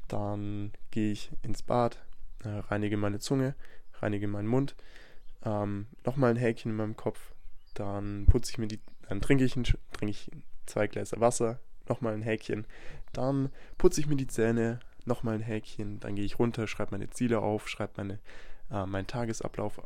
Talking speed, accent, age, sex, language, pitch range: 150 wpm, German, 10-29, male, German, 105-125 Hz